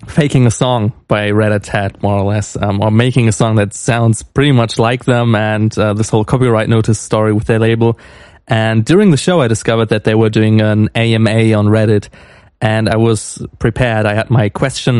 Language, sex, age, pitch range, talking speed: English, male, 20-39, 110-125 Hz, 210 wpm